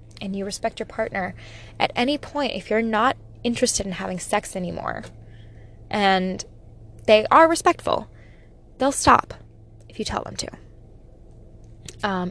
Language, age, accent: English, 10-29, American